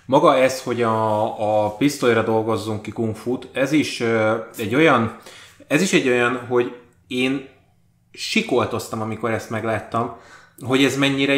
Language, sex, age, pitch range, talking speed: Hungarian, male, 20-39, 115-140 Hz, 135 wpm